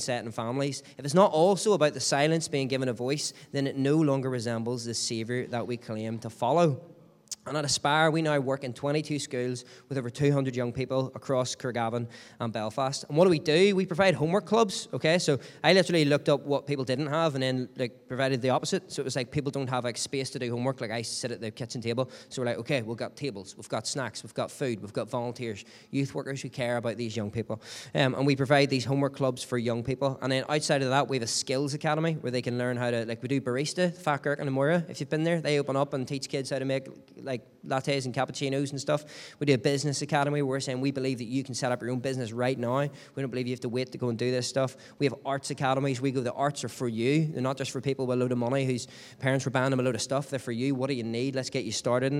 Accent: Irish